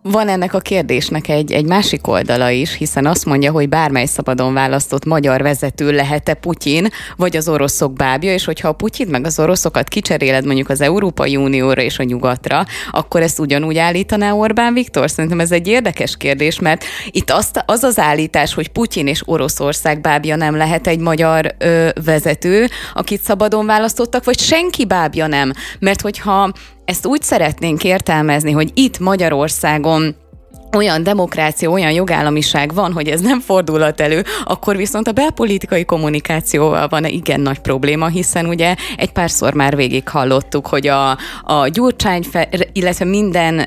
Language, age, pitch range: Hungarian, 20-39, 145-190 Hz